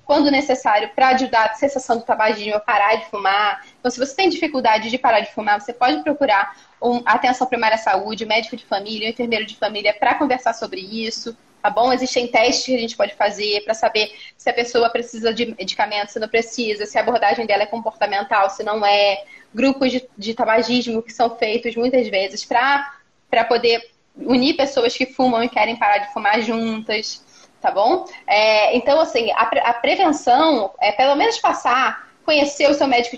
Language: Portuguese